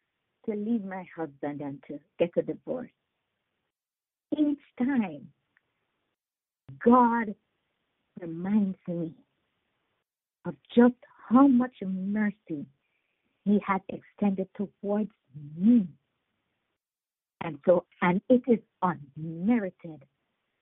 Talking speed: 85 wpm